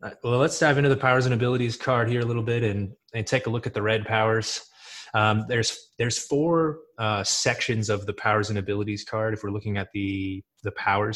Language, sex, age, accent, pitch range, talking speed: English, male, 20-39, American, 100-115 Hz, 220 wpm